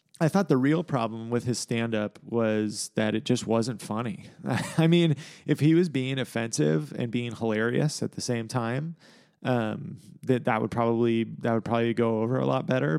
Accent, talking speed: American, 190 wpm